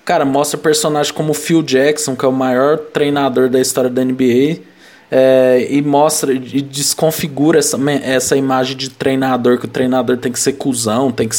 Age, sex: 20-39, male